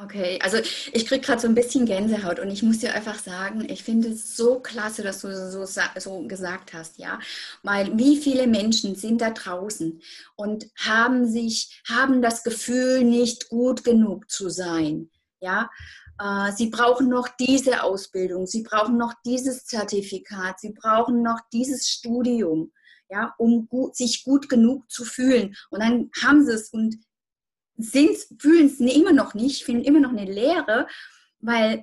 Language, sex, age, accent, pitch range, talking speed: German, female, 30-49, German, 210-255 Hz, 165 wpm